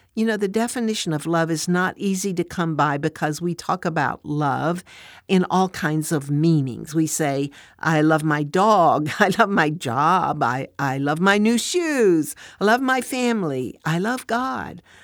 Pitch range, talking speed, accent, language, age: 155-200 Hz, 180 wpm, American, English, 60-79